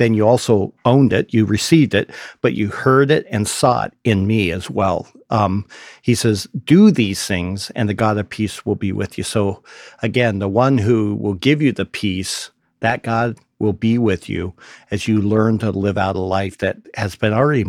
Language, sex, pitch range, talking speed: English, male, 100-120 Hz, 210 wpm